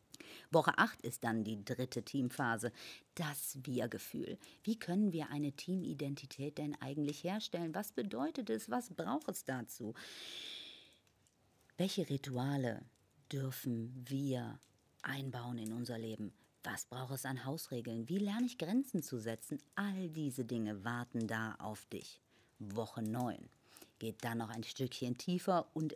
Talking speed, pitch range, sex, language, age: 135 wpm, 120-150 Hz, female, German, 50-69